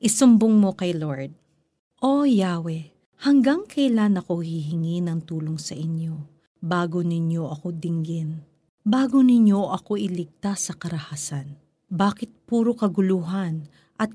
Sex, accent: female, native